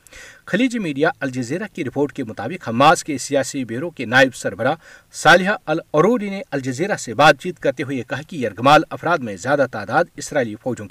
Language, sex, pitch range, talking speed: Urdu, male, 125-165 Hz, 175 wpm